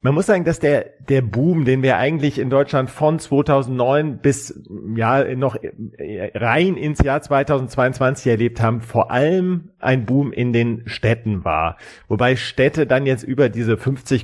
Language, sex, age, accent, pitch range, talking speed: German, male, 40-59, German, 120-145 Hz, 160 wpm